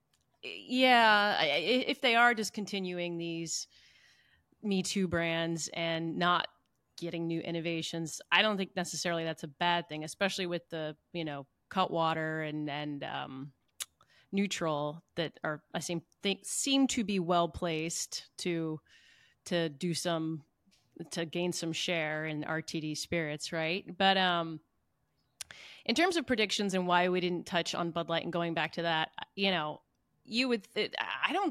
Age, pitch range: 30-49, 170-215 Hz